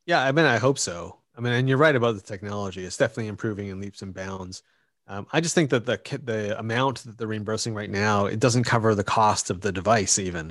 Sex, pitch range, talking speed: male, 100-125 Hz, 245 wpm